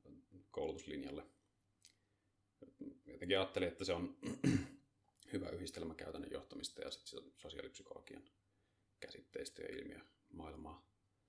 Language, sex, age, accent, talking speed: Finnish, male, 30-49, native, 90 wpm